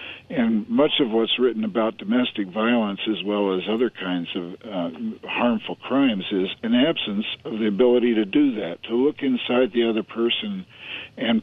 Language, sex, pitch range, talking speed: English, male, 105-130 Hz, 175 wpm